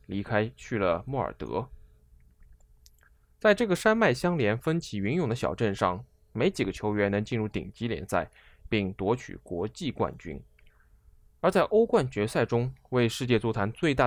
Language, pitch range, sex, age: Chinese, 95-145 Hz, male, 20-39